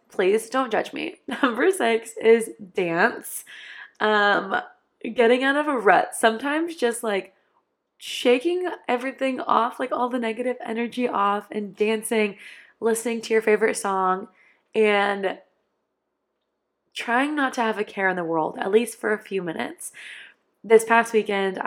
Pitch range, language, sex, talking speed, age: 200-245 Hz, English, female, 145 wpm, 20-39